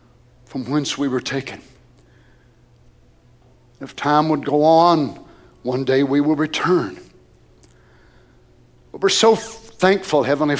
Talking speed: 115 wpm